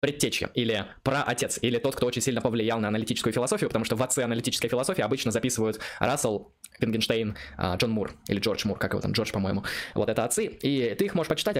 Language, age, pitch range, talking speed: Russian, 20-39, 110-135 Hz, 210 wpm